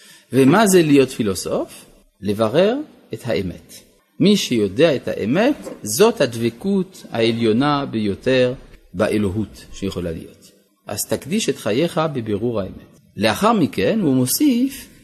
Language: Hebrew